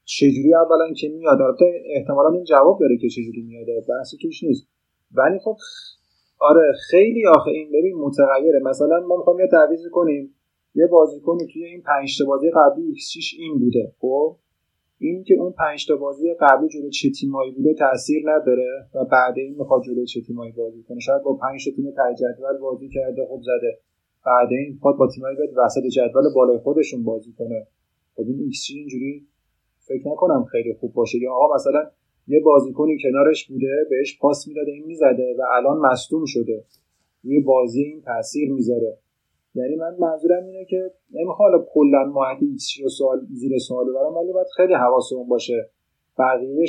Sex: male